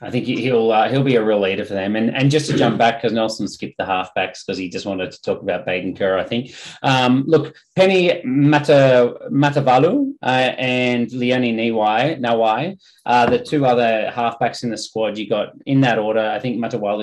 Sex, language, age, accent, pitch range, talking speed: male, English, 30-49, Australian, 105-125 Hz, 205 wpm